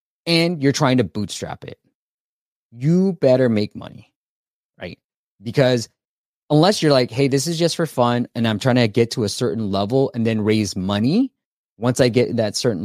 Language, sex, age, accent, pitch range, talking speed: English, male, 20-39, American, 100-125 Hz, 185 wpm